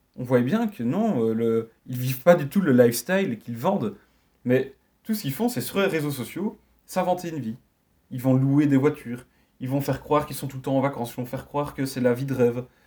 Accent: French